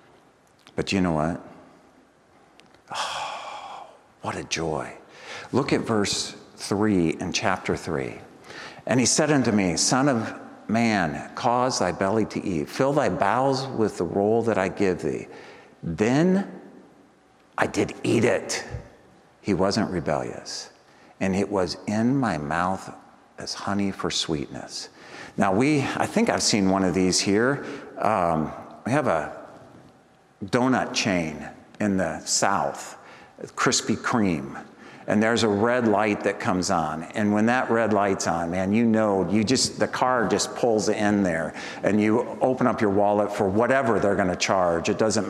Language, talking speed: English, 150 wpm